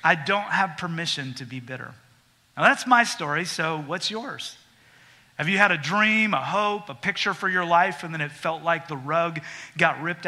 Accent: American